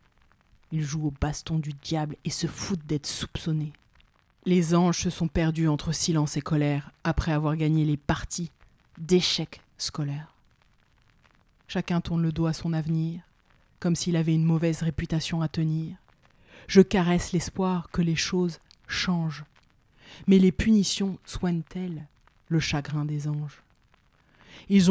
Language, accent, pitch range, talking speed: French, French, 155-175 Hz, 140 wpm